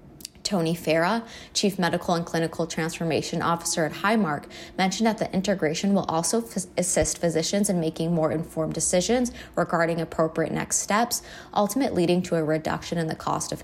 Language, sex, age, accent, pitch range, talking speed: English, female, 20-39, American, 160-190 Hz, 165 wpm